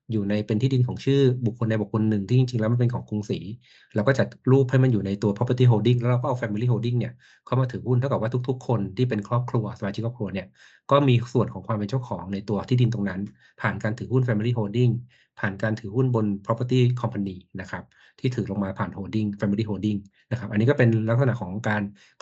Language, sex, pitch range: Thai, male, 105-125 Hz